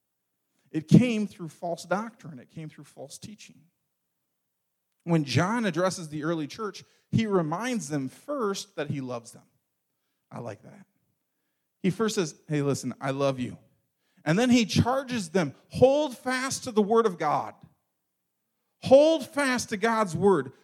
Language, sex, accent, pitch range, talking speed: English, male, American, 140-215 Hz, 150 wpm